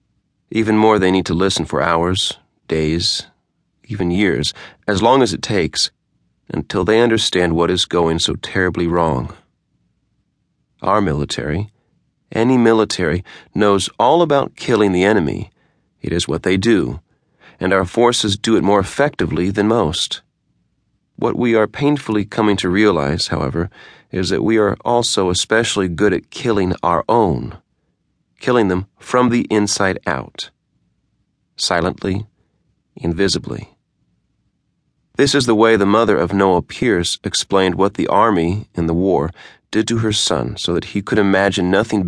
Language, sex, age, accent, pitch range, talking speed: English, male, 40-59, American, 85-110 Hz, 145 wpm